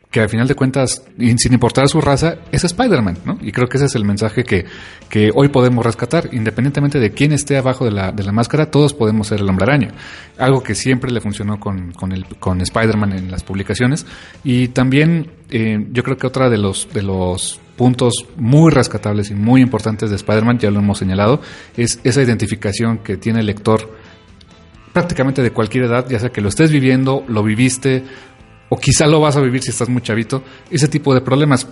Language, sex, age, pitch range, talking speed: Spanish, male, 40-59, 110-140 Hz, 205 wpm